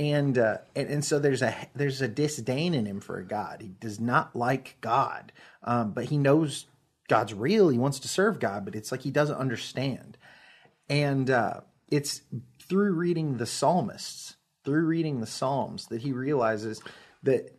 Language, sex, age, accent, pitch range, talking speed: English, male, 30-49, American, 120-155 Hz, 175 wpm